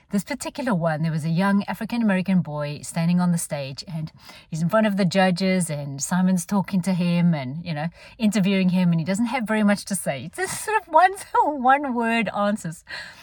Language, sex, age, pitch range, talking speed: English, female, 30-49, 175-240 Hz, 200 wpm